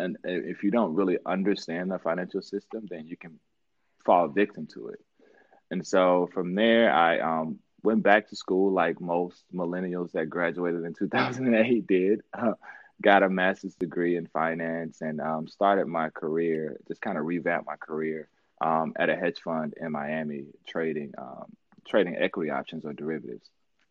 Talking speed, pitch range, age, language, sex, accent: 165 wpm, 75-90 Hz, 20-39, English, male, American